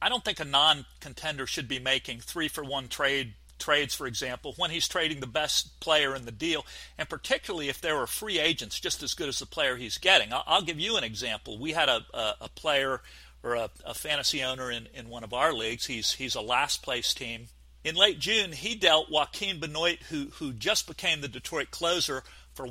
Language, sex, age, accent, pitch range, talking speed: English, male, 40-59, American, 120-165 Hz, 210 wpm